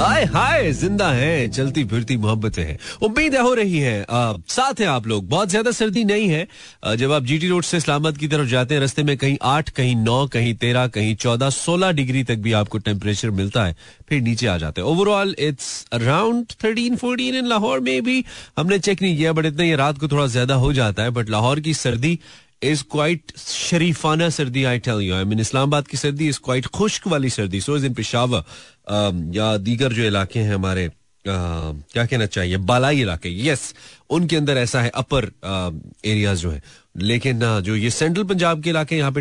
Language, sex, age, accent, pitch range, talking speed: Hindi, male, 30-49, native, 115-165 Hz, 180 wpm